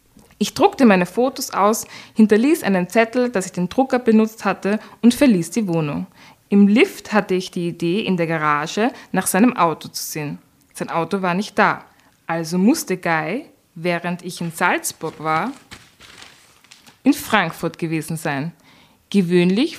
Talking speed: 150 wpm